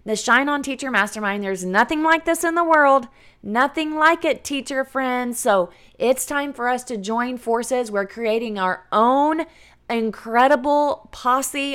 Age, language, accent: 20-39, English, American